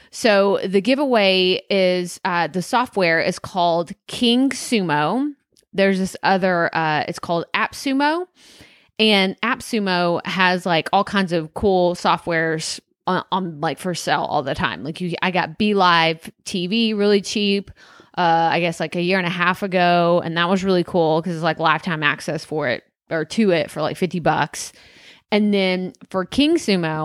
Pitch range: 170-215 Hz